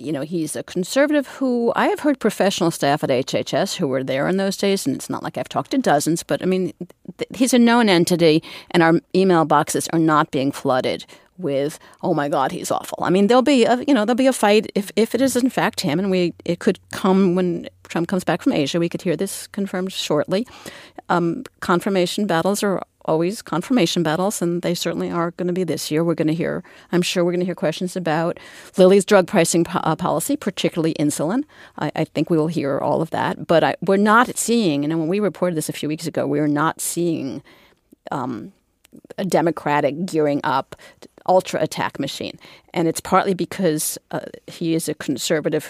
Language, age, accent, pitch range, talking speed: English, 50-69, American, 160-195 Hz, 215 wpm